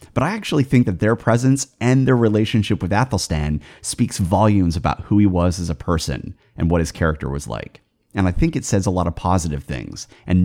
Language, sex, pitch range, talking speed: English, male, 85-120 Hz, 220 wpm